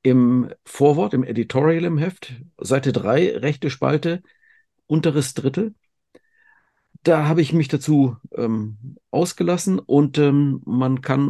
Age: 50-69